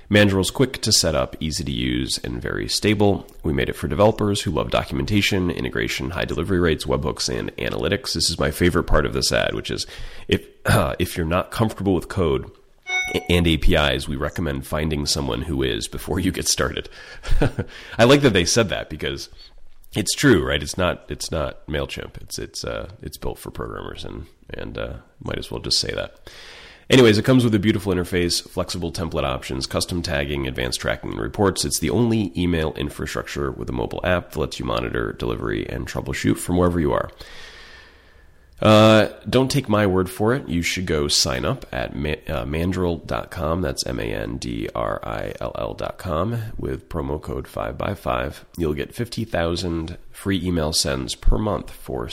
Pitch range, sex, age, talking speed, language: 70-100 Hz, male, 30-49, 175 wpm, English